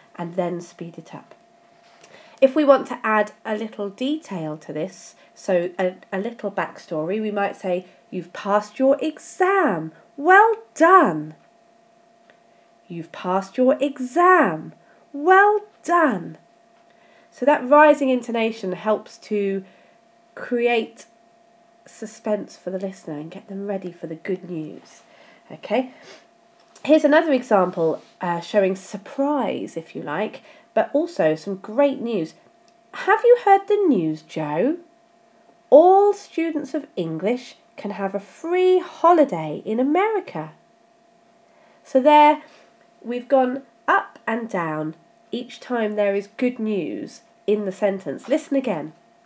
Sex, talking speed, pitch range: female, 125 wpm, 190-305 Hz